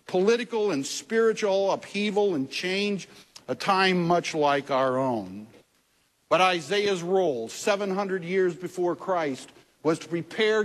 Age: 60-79